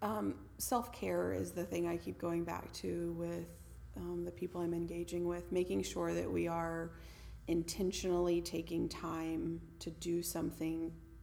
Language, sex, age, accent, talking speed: English, female, 30-49, American, 150 wpm